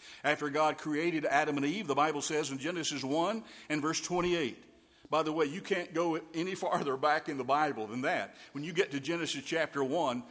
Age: 50-69